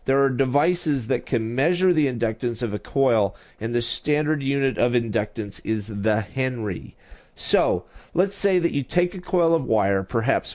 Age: 40-59